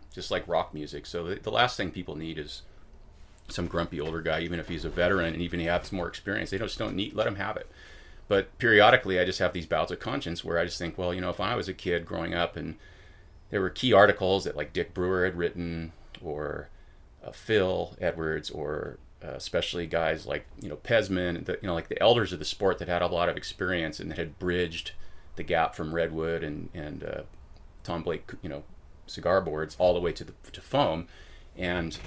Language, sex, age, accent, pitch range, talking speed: English, male, 30-49, American, 80-90 Hz, 225 wpm